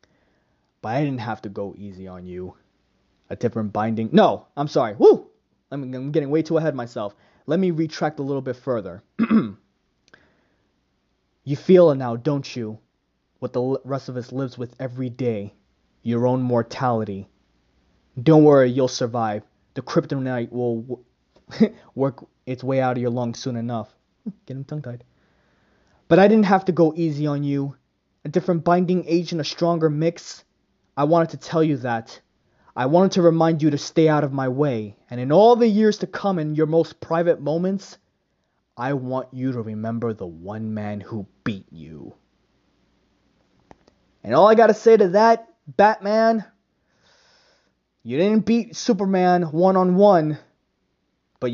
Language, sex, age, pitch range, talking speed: English, male, 20-39, 120-170 Hz, 160 wpm